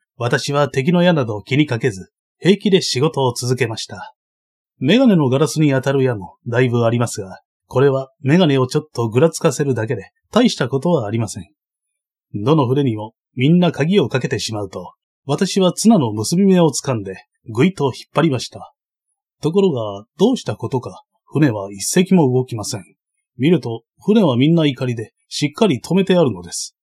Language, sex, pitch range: Japanese, male, 115-170 Hz